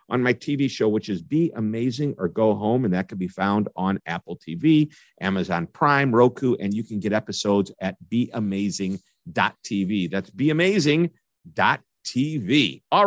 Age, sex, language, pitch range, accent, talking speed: 50-69, male, English, 110-150 Hz, American, 145 wpm